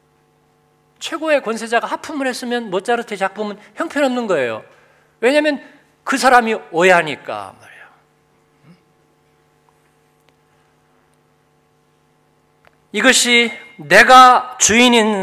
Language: Korean